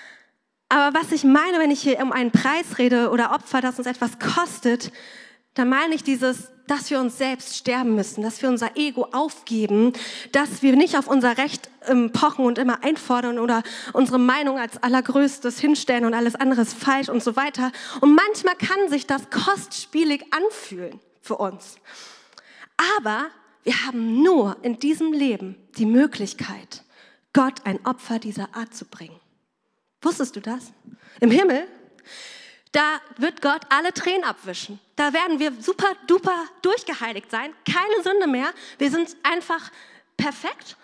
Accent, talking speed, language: German, 155 wpm, German